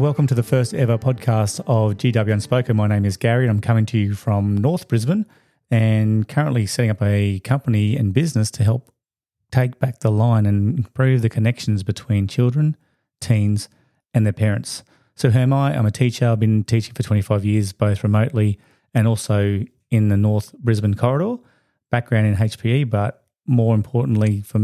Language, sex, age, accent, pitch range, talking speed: English, male, 30-49, Australian, 105-125 Hz, 180 wpm